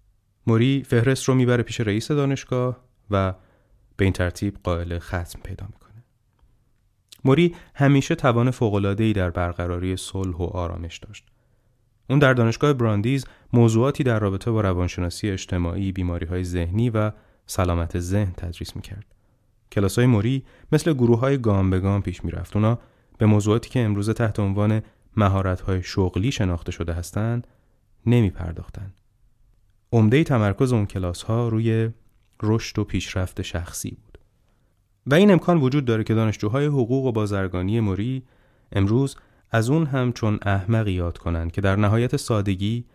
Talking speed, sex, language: 135 wpm, male, Persian